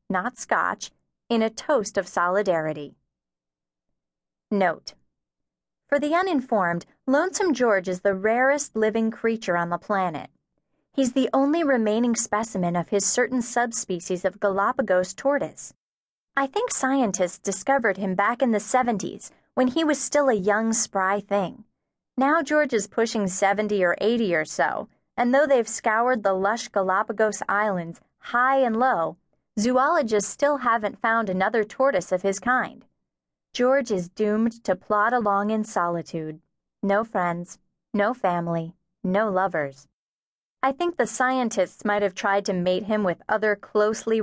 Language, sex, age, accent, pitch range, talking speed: English, female, 30-49, American, 185-250 Hz, 145 wpm